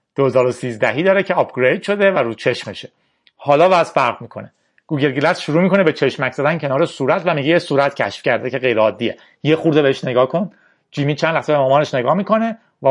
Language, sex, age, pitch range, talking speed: Persian, male, 30-49, 130-170 Hz, 210 wpm